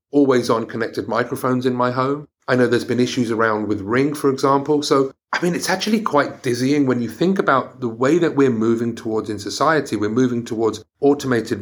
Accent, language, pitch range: British, English, 115-145 Hz